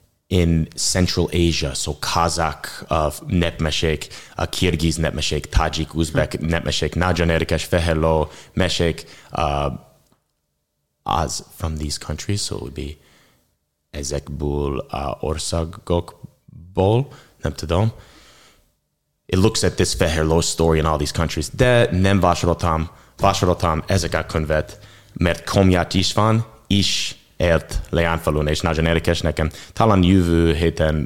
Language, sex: English, male